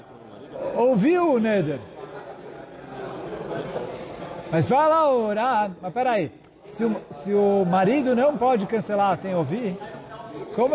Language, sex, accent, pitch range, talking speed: Portuguese, male, Brazilian, 175-235 Hz, 105 wpm